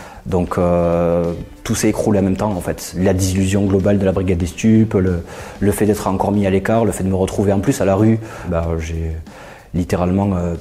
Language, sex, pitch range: French, male, 95-110 Hz